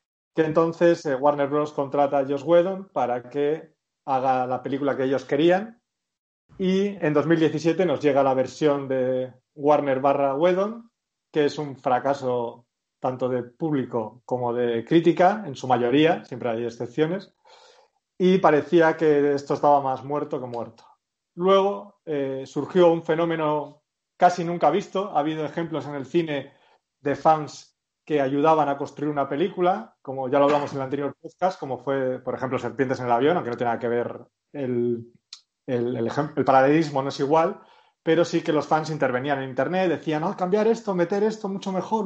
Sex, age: male, 30-49